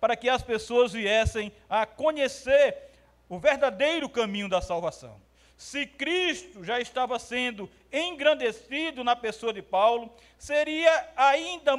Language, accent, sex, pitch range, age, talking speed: Portuguese, Brazilian, male, 230-305 Hz, 50-69, 120 wpm